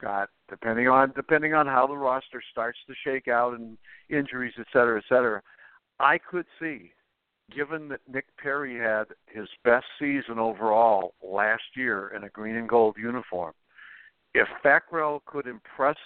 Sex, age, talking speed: male, 60-79, 155 wpm